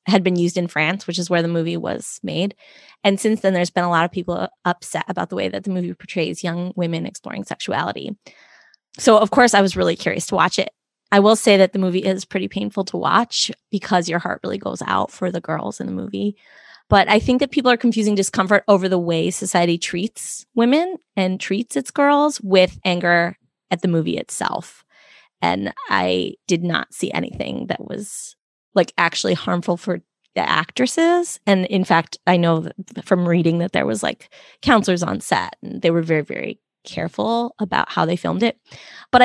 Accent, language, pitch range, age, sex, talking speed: American, English, 180-225 Hz, 20-39, female, 200 wpm